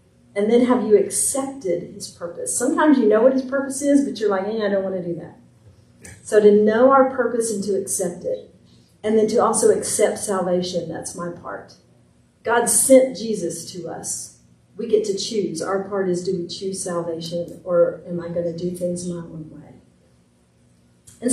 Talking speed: 195 wpm